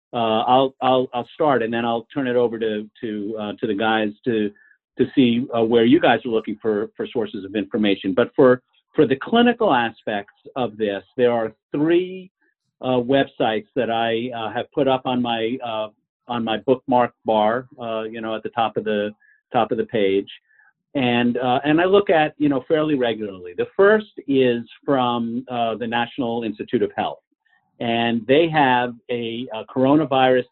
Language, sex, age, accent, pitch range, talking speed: English, male, 50-69, American, 110-135 Hz, 185 wpm